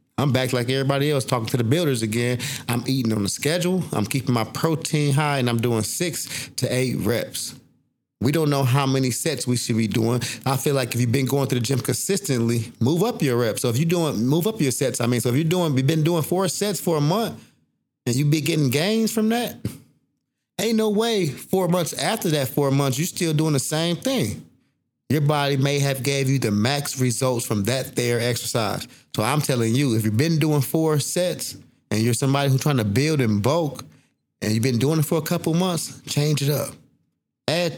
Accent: American